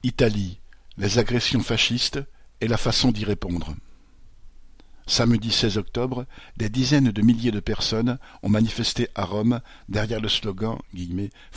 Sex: male